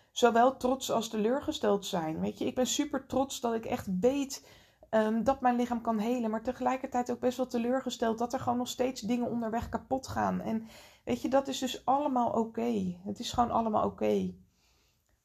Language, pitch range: Dutch, 185-235 Hz